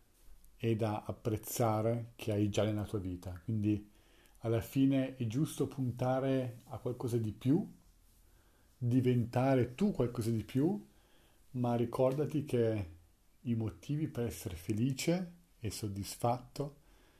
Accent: native